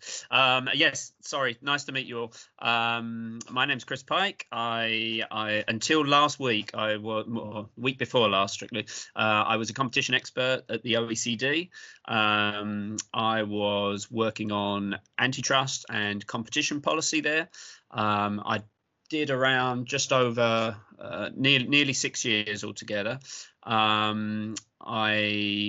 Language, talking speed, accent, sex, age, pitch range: English, 140 wpm, British, male, 20-39, 105-125 Hz